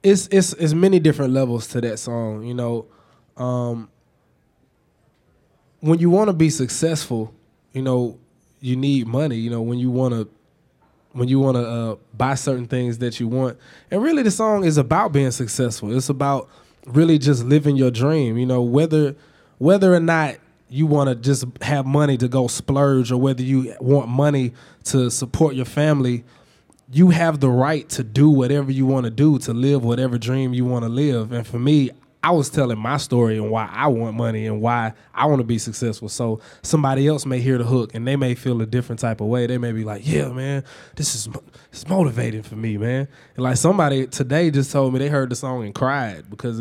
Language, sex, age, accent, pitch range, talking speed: English, male, 20-39, American, 120-145 Hz, 200 wpm